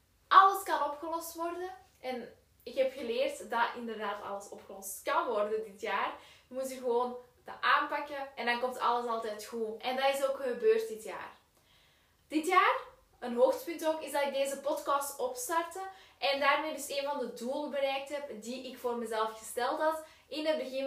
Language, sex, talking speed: Dutch, female, 180 wpm